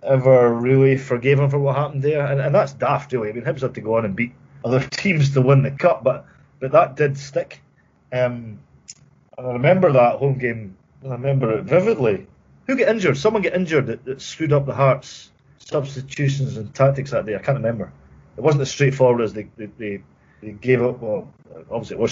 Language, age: English, 30-49